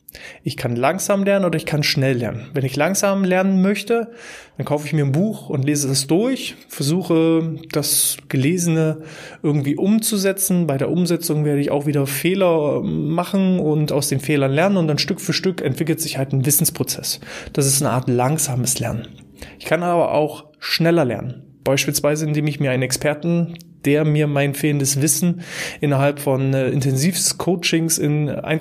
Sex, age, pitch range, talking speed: male, 20-39, 135-170 Hz, 170 wpm